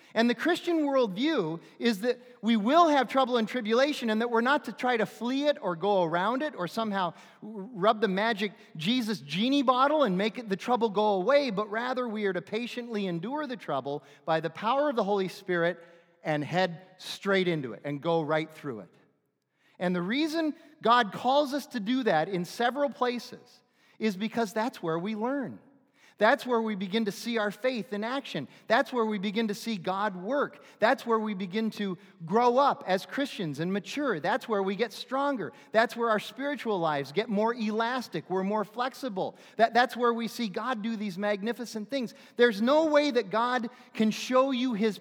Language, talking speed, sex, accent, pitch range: English, 195 wpm, male, American, 185-245 Hz